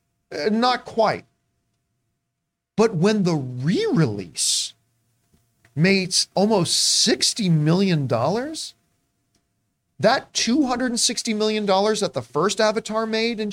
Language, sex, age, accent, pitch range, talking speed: English, male, 40-59, American, 145-215 Hz, 85 wpm